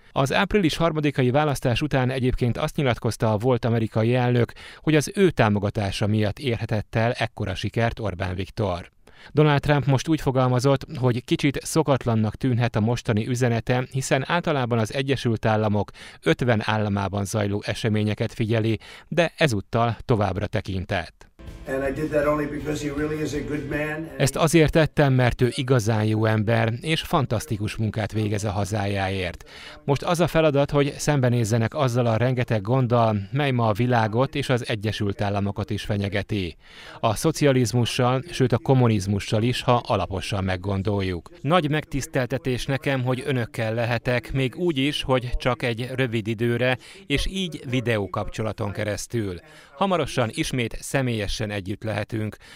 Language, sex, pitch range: Hungarian, male, 105-140 Hz